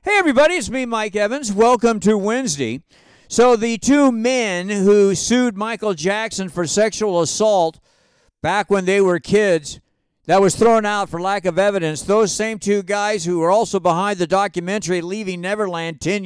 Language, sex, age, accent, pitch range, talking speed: English, male, 50-69, American, 175-220 Hz, 170 wpm